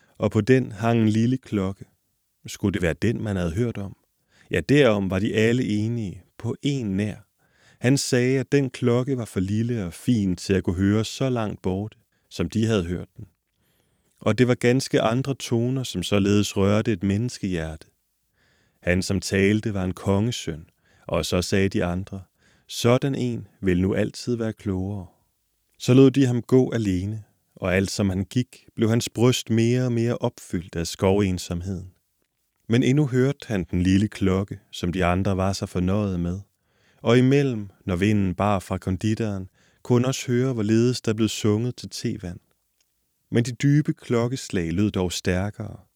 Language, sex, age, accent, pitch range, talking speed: Danish, male, 30-49, native, 95-120 Hz, 175 wpm